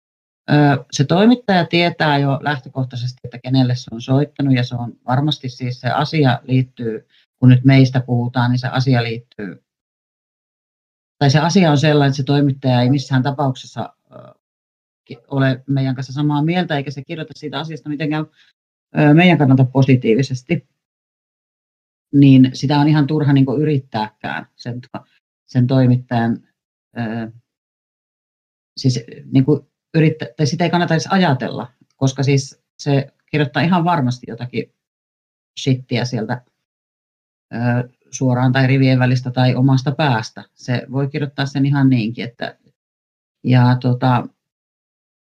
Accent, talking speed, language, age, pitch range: native, 125 wpm, Finnish, 40-59, 125-150 Hz